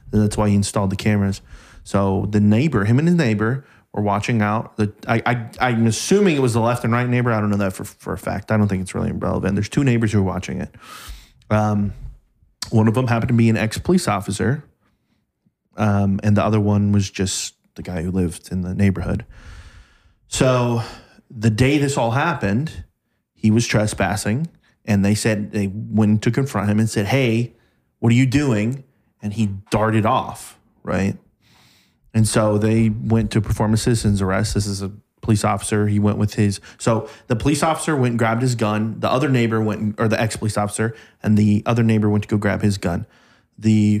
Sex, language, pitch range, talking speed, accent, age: male, English, 105-120 Hz, 205 wpm, American, 20-39